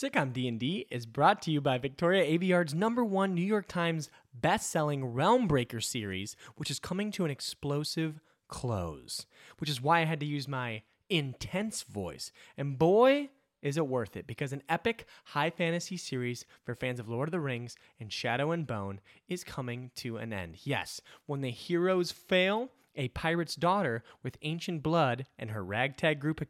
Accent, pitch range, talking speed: American, 125-175 Hz, 185 wpm